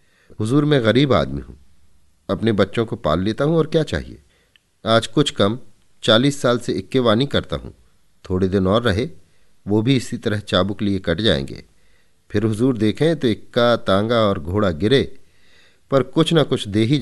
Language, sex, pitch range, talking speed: Hindi, male, 95-130 Hz, 185 wpm